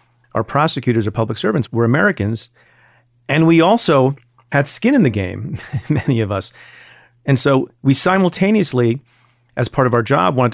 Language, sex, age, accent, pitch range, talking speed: English, male, 40-59, American, 120-140 Hz, 160 wpm